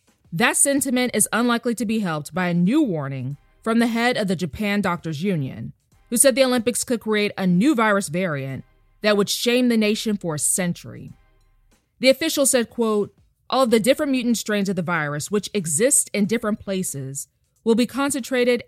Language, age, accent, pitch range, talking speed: English, 20-39, American, 170-240 Hz, 185 wpm